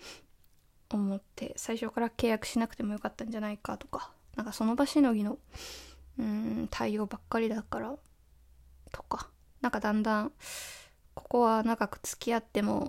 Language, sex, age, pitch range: Japanese, female, 20-39, 210-270 Hz